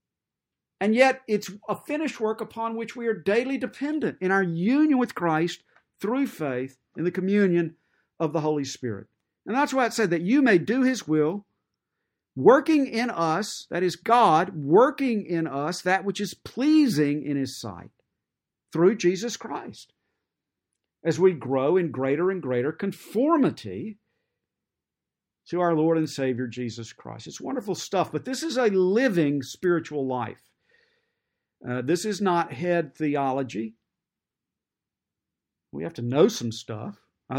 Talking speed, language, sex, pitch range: 150 wpm, English, male, 135-210 Hz